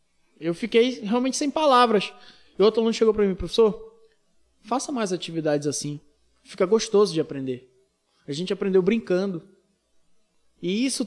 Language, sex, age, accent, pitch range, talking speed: Portuguese, male, 20-39, Brazilian, 175-250 Hz, 140 wpm